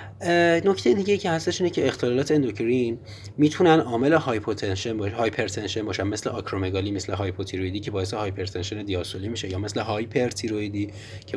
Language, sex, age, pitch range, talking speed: Persian, male, 30-49, 100-115 Hz, 135 wpm